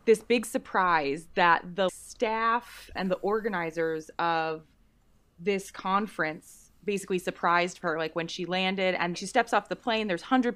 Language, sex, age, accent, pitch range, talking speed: English, female, 20-39, American, 175-235 Hz, 155 wpm